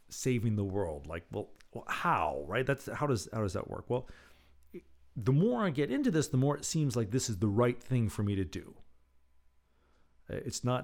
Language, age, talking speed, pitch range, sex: English, 40-59, 205 wpm, 90-115 Hz, male